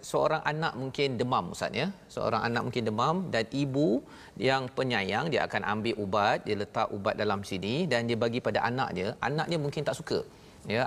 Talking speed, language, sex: 195 wpm, Malayalam, male